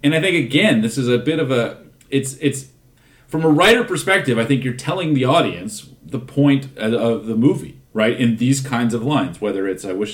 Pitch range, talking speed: 105-135 Hz, 215 wpm